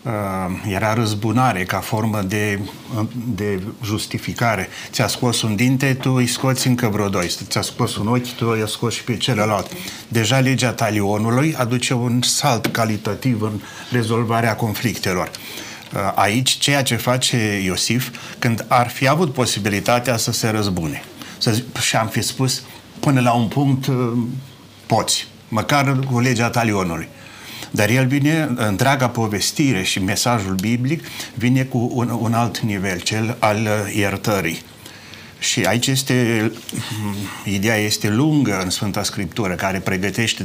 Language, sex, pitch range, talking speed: Romanian, male, 105-125 Hz, 135 wpm